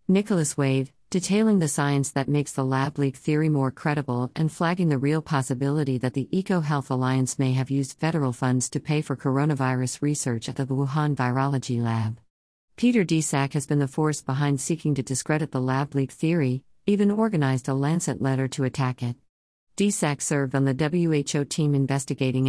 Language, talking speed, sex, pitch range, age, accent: English, 175 wpm, female, 130-155 Hz, 50-69, American